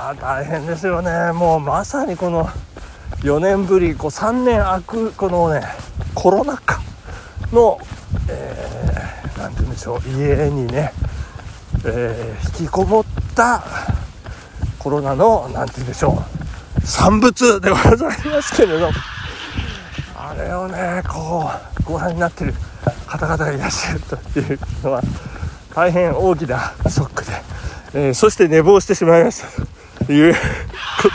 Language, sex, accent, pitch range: Japanese, male, native, 145-230 Hz